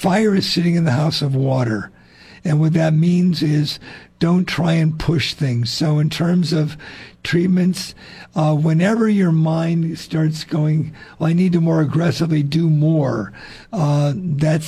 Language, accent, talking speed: English, American, 160 wpm